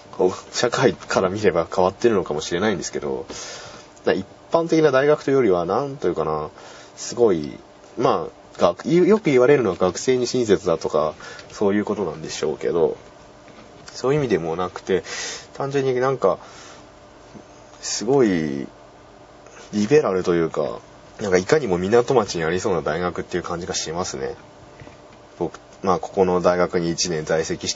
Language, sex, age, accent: Japanese, male, 20-39, native